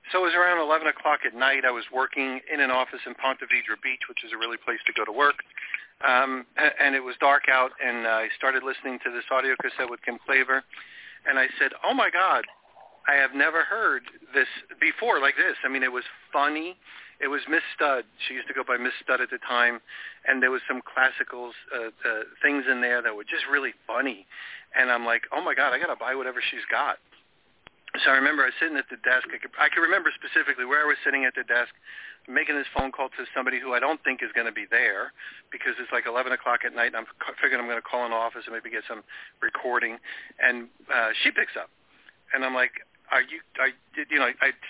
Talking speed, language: 240 wpm, English